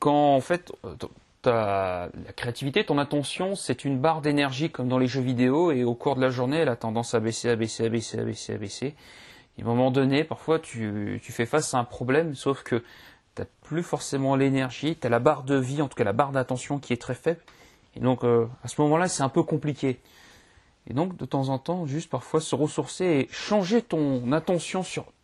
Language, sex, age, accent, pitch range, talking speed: French, male, 30-49, French, 125-160 Hz, 225 wpm